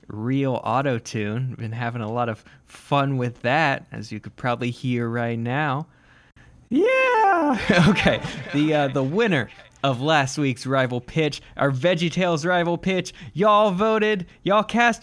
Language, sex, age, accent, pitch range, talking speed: English, male, 20-39, American, 125-185 Hz, 150 wpm